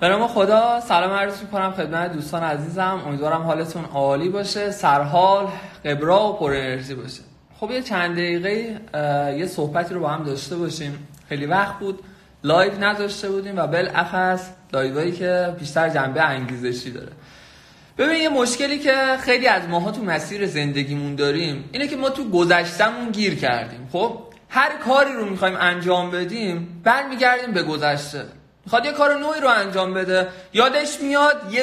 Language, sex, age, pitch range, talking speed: Persian, male, 20-39, 165-235 Hz, 150 wpm